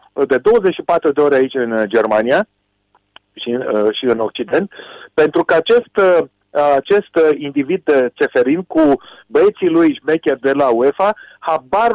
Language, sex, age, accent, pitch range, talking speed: Romanian, male, 40-59, native, 145-210 Hz, 140 wpm